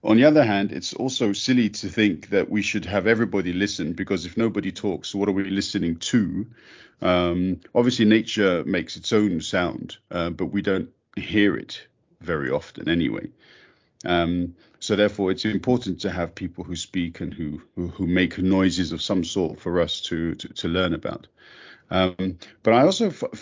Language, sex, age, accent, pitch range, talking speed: English, male, 40-59, British, 95-120 Hz, 180 wpm